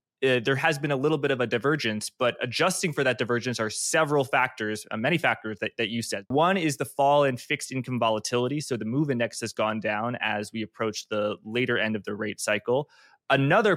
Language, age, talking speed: English, 20-39, 220 wpm